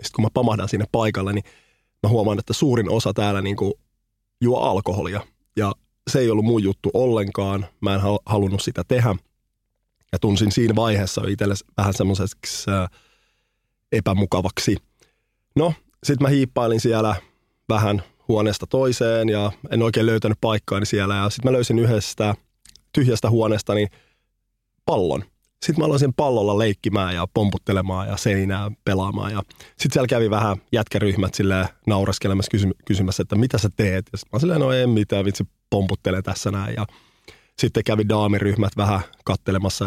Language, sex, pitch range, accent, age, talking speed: Finnish, male, 95-115 Hz, native, 20-39, 145 wpm